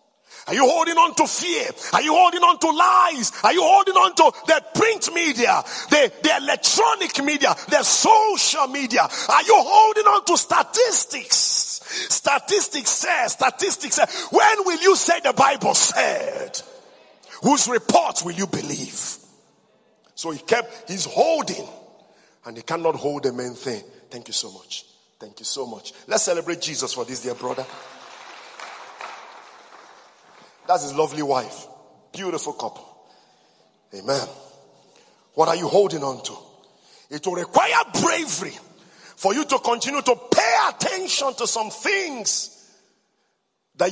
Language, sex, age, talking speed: English, male, 50-69, 140 wpm